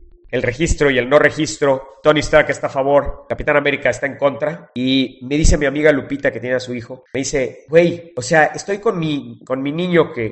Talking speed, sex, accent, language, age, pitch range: 225 wpm, male, Mexican, English, 40-59, 135-190 Hz